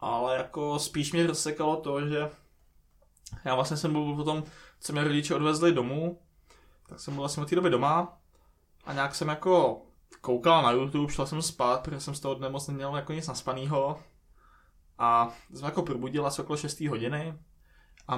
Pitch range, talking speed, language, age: 130-155 Hz, 180 wpm, Czech, 20-39